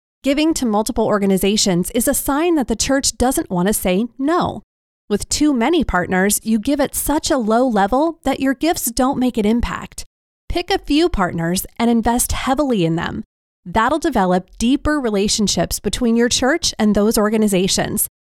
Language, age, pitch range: English, 30-49, 195-280 Hz